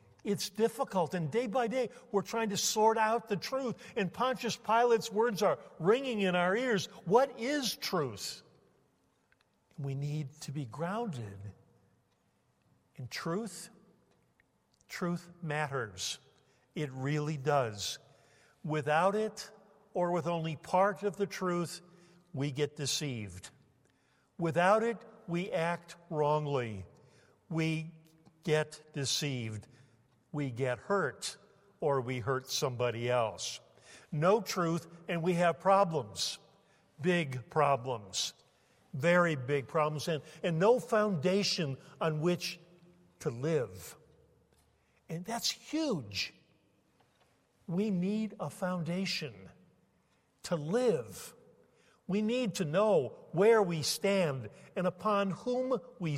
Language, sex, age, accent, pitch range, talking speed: English, male, 60-79, American, 145-200 Hz, 110 wpm